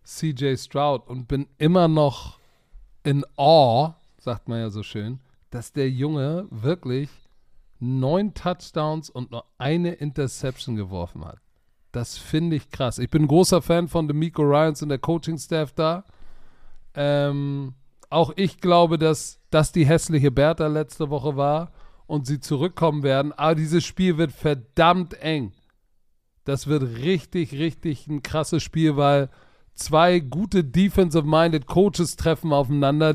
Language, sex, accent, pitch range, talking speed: German, male, German, 140-165 Hz, 140 wpm